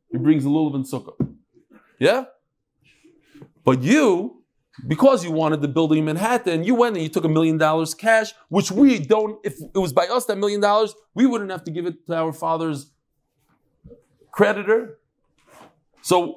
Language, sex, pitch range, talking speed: English, male, 140-210 Hz, 175 wpm